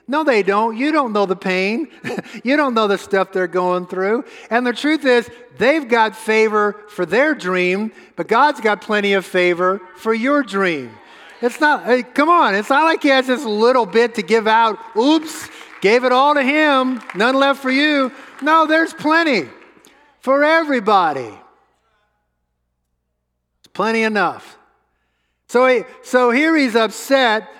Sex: male